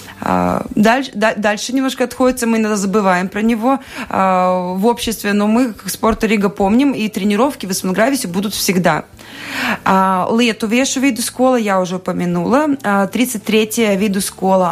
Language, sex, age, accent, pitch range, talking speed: Russian, female, 20-39, native, 185-240 Hz, 150 wpm